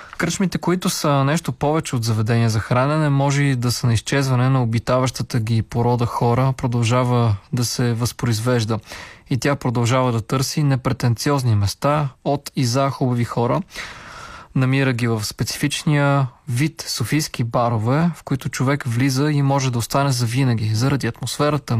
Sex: male